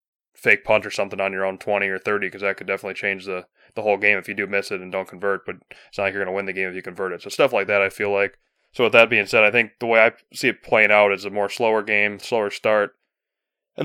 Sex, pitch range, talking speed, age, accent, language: male, 100-110 Hz, 305 wpm, 20-39, American, English